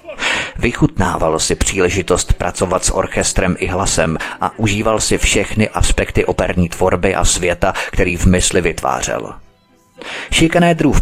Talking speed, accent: 120 wpm, native